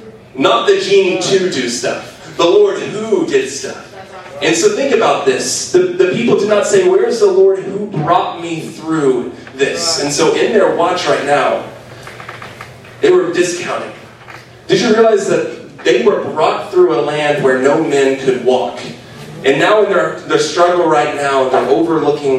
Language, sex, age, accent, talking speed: English, male, 30-49, American, 175 wpm